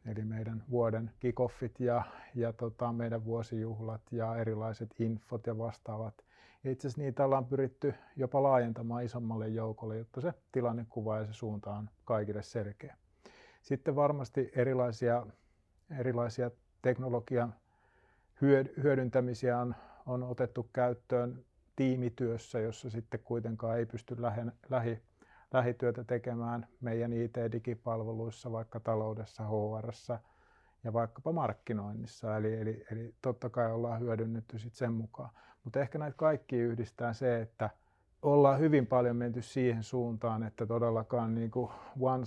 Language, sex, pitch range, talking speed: Finnish, male, 115-125 Hz, 125 wpm